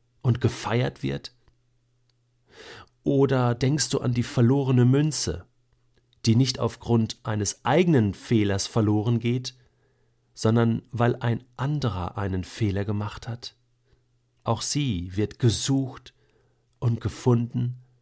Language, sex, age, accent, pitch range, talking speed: German, male, 40-59, German, 115-125 Hz, 105 wpm